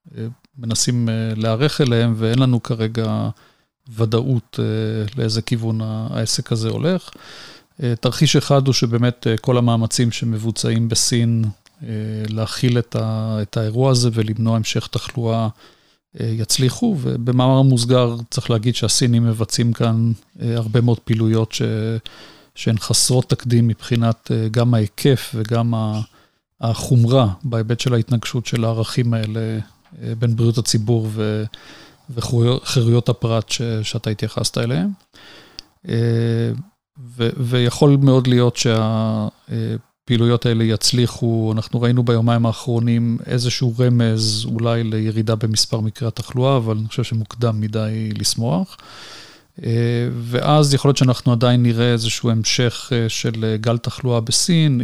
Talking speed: 105 wpm